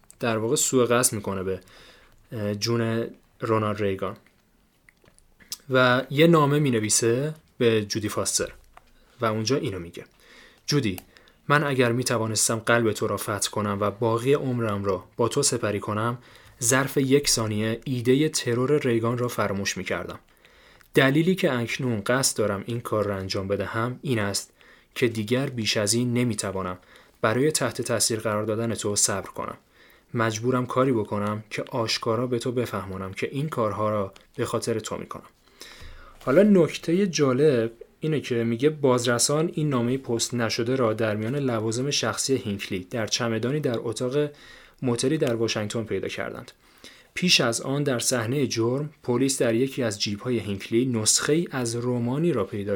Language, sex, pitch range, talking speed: Persian, male, 110-130 Hz, 150 wpm